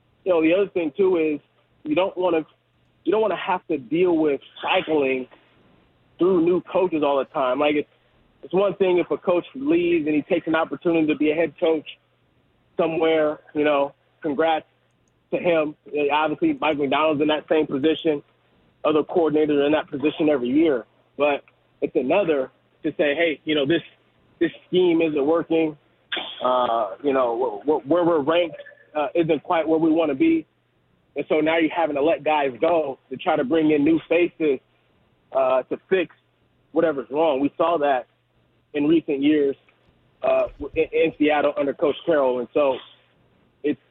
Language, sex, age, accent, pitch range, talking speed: English, male, 30-49, American, 145-170 Hz, 180 wpm